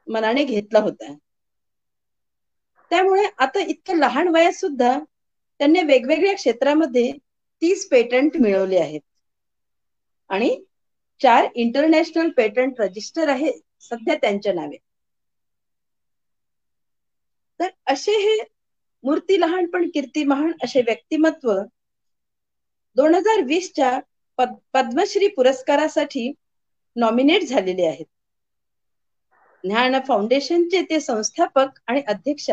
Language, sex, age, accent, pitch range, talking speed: Marathi, female, 40-59, native, 240-335 Hz, 90 wpm